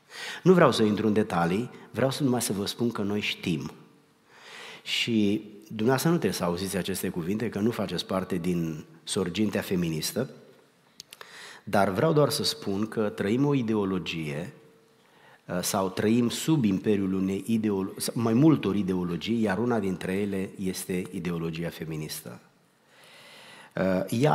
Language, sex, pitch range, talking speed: Romanian, male, 95-120 Hz, 135 wpm